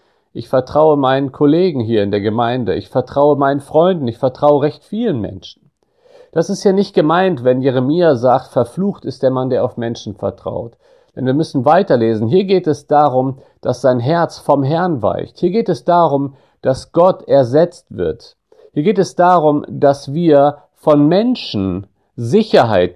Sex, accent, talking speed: male, German, 165 wpm